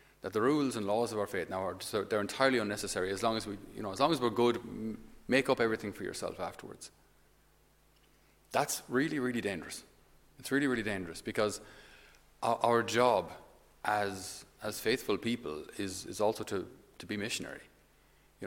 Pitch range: 95-125 Hz